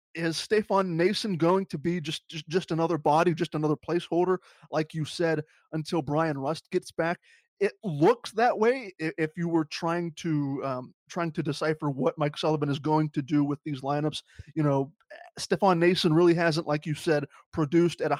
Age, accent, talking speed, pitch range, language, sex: 20-39, American, 190 wpm, 150-185 Hz, English, male